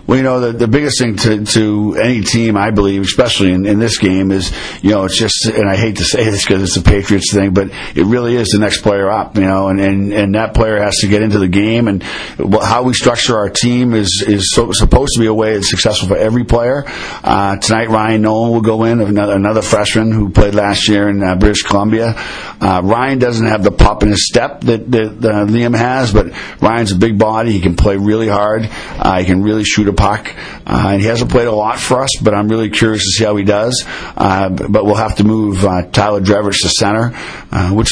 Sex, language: male, English